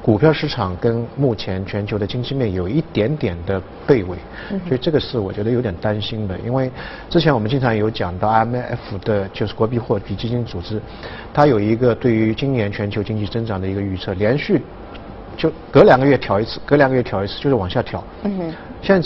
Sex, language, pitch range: male, Chinese, 105-140 Hz